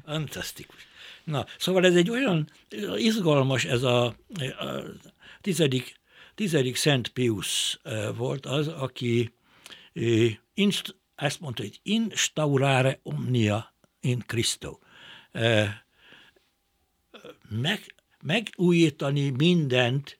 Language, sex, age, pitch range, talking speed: Hungarian, male, 60-79, 105-150 Hz, 90 wpm